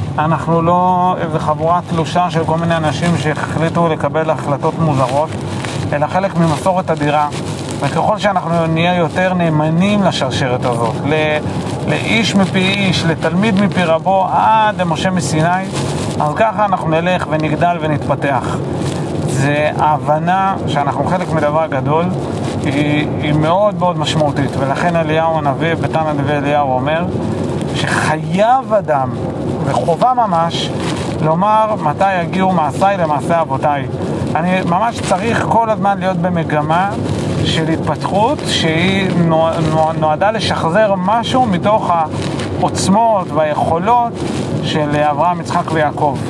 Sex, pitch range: male, 150-185 Hz